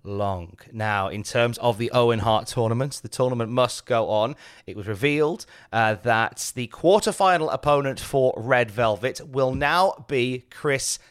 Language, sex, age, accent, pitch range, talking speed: English, male, 30-49, British, 115-160 Hz, 155 wpm